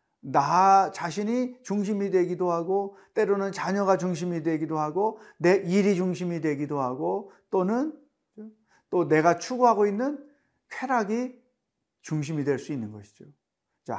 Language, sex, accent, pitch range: Korean, male, native, 155-210 Hz